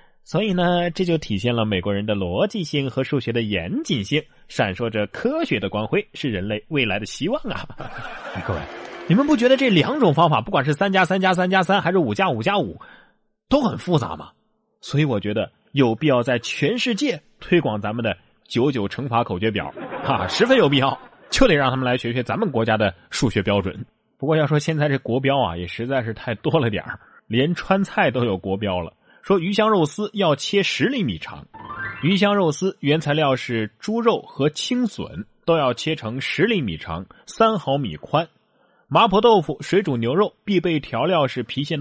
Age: 20-39